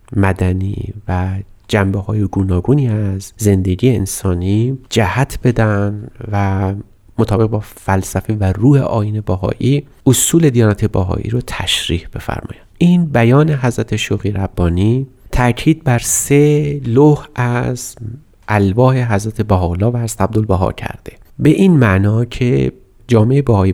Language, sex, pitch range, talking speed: Persian, male, 100-125 Hz, 115 wpm